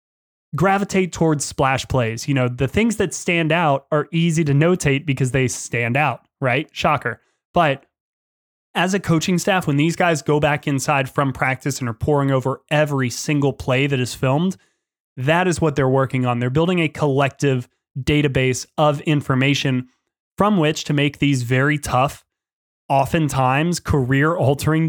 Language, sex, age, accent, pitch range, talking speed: English, male, 20-39, American, 135-165 Hz, 160 wpm